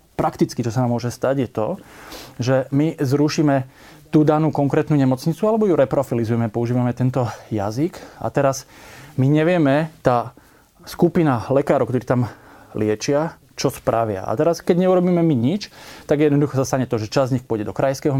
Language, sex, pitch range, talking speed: Slovak, male, 120-145 Hz, 165 wpm